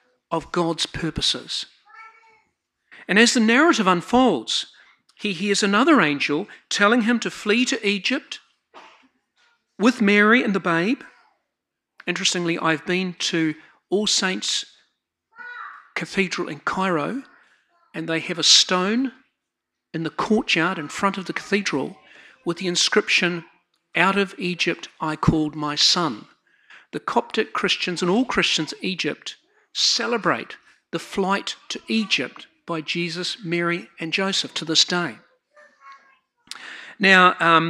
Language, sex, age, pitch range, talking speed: English, male, 50-69, 170-245 Hz, 125 wpm